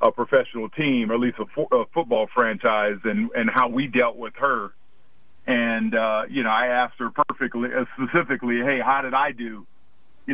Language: English